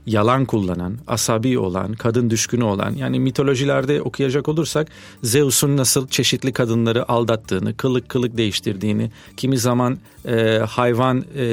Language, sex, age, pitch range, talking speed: Turkish, male, 40-59, 115-155 Hz, 125 wpm